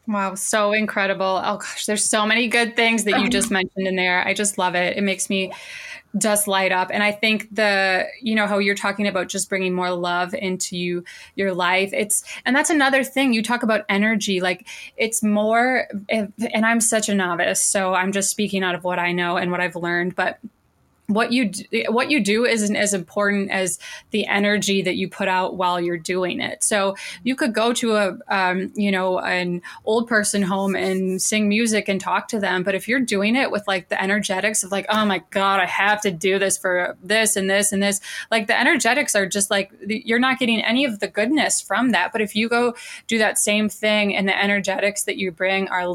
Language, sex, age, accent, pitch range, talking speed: English, female, 20-39, American, 190-220 Hz, 220 wpm